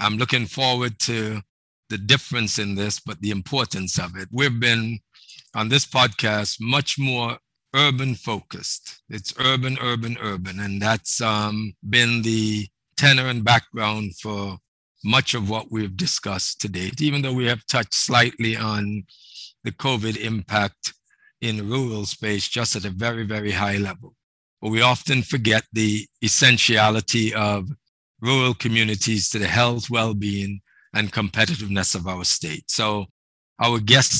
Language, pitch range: English, 100-125 Hz